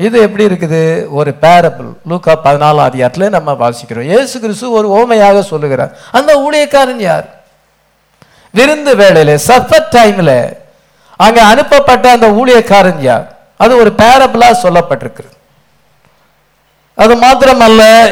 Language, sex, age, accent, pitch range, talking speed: English, male, 60-79, Indian, 170-240 Hz, 40 wpm